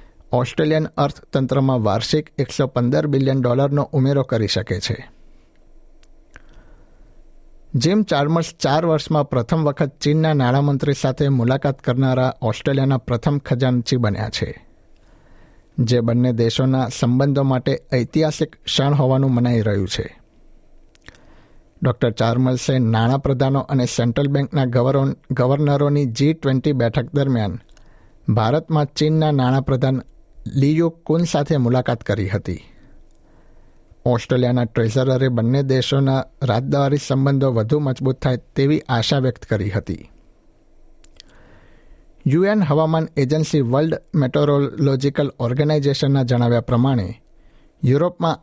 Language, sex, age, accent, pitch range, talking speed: Gujarati, male, 60-79, native, 125-145 Hz, 100 wpm